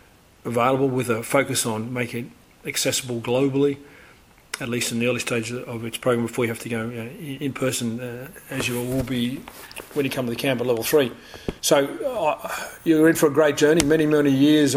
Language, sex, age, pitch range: English, male, 40-59, 125-145 Hz